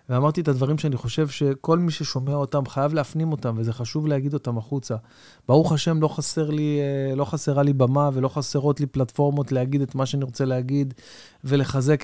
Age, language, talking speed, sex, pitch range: 30-49, Hebrew, 185 wpm, male, 125-155 Hz